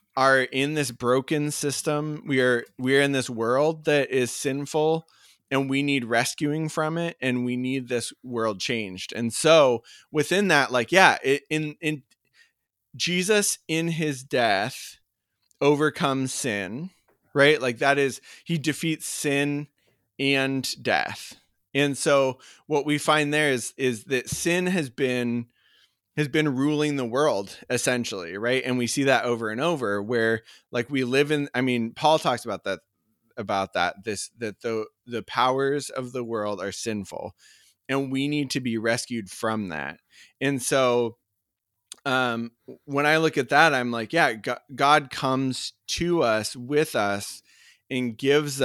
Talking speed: 155 wpm